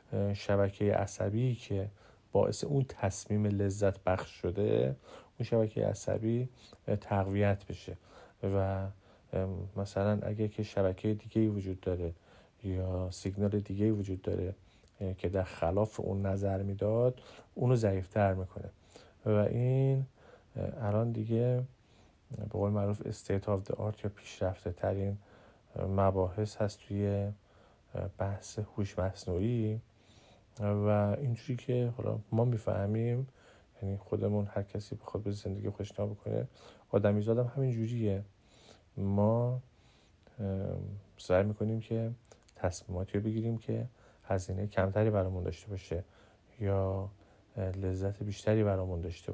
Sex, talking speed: male, 105 wpm